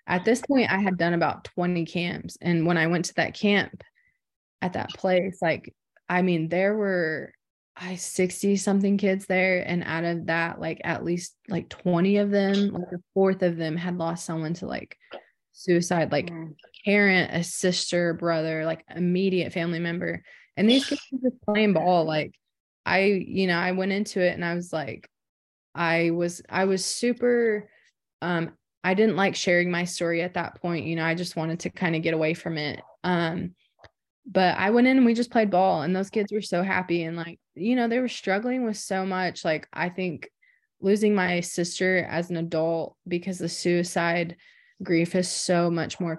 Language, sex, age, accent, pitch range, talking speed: English, female, 20-39, American, 170-195 Hz, 190 wpm